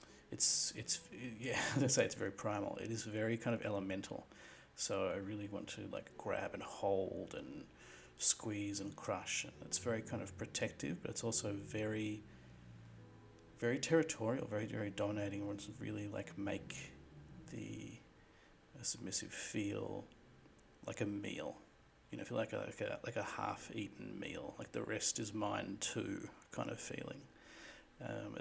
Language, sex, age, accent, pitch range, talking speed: English, male, 40-59, Australian, 100-110 Hz, 155 wpm